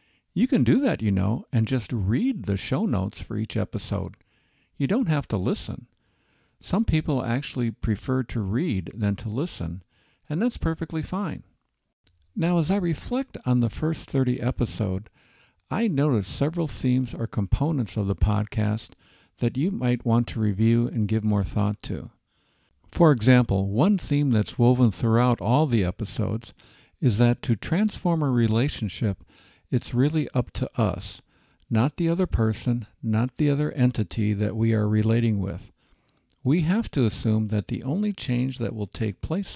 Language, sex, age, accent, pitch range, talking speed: English, male, 50-69, American, 105-130 Hz, 165 wpm